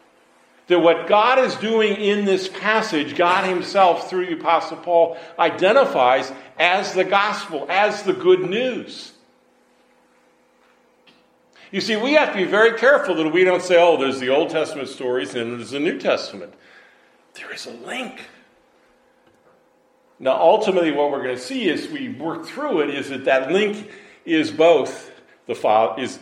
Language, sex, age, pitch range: English, male, 50-69, 155-235 Hz